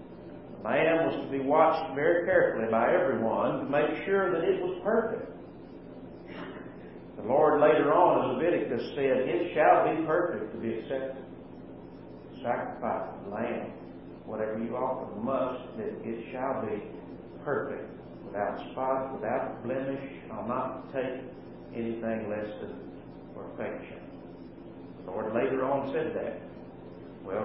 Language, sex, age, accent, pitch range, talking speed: English, male, 50-69, American, 85-145 Hz, 135 wpm